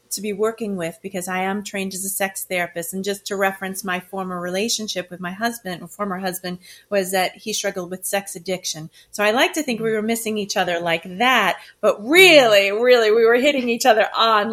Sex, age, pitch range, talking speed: female, 30-49, 180-220 Hz, 220 wpm